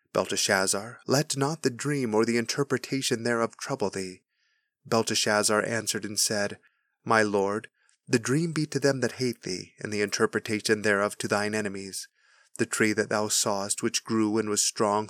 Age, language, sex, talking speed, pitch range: 30-49, English, male, 165 wpm, 110-125 Hz